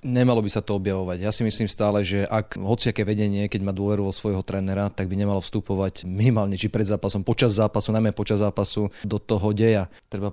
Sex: male